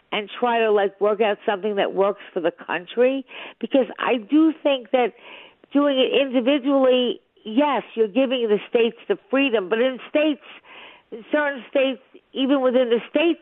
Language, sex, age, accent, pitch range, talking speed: English, female, 50-69, American, 205-275 Hz, 165 wpm